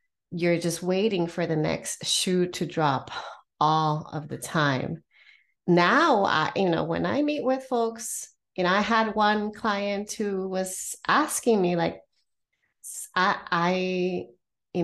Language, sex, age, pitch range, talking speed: English, female, 30-49, 165-200 Hz, 140 wpm